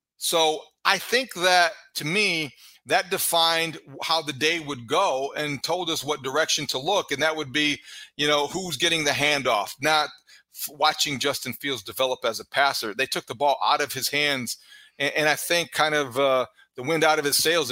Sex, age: male, 40-59